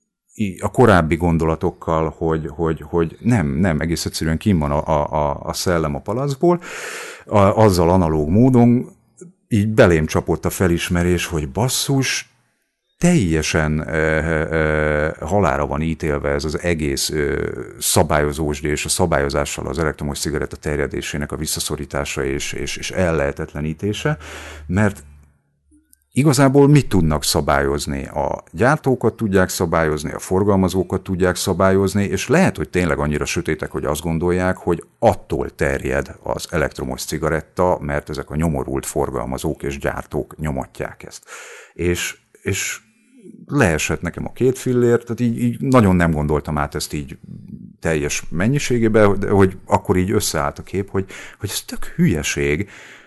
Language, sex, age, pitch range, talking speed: Hungarian, male, 50-69, 75-100 Hz, 135 wpm